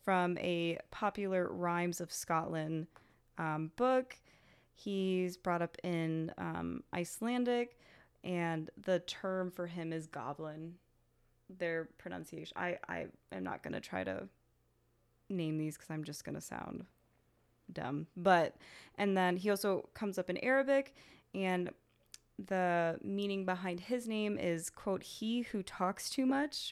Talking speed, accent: 140 wpm, American